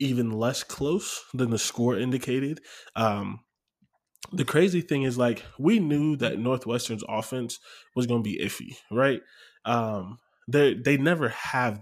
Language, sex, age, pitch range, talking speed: English, male, 20-39, 110-140 Hz, 145 wpm